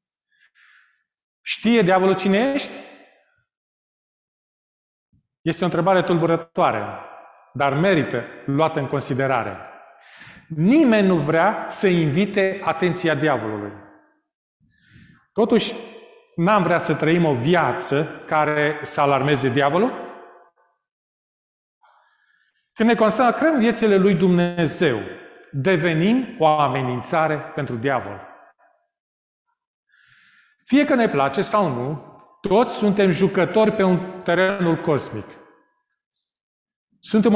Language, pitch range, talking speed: Romanian, 165-240 Hz, 90 wpm